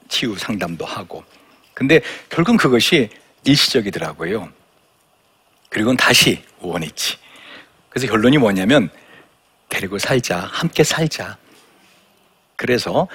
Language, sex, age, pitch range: Korean, male, 60-79, 110-160 Hz